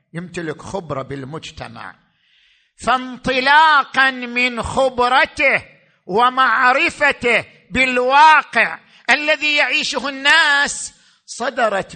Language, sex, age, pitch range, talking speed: Arabic, male, 50-69, 180-255 Hz, 60 wpm